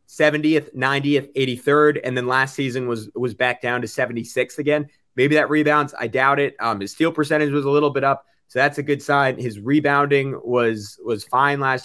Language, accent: English, American